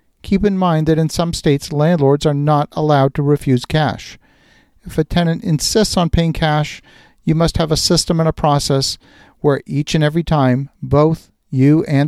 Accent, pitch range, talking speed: American, 135-160 Hz, 185 wpm